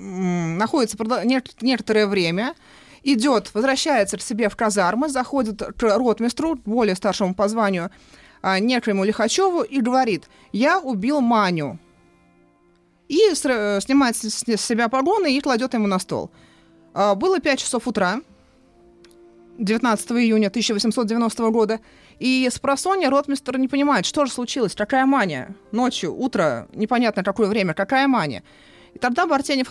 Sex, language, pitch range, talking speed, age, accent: female, Russian, 200-255 Hz, 125 wpm, 30-49, native